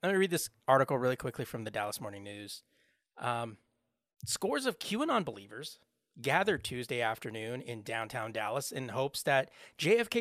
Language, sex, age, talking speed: English, male, 30-49, 160 wpm